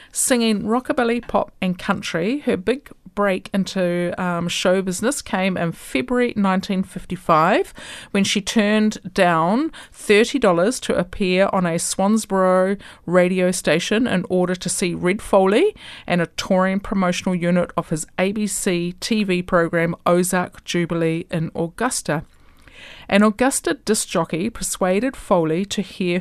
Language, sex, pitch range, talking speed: English, female, 170-210 Hz, 130 wpm